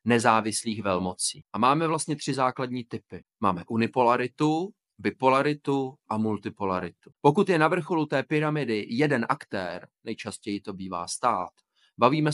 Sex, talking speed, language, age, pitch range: male, 125 wpm, Czech, 30-49, 105-140 Hz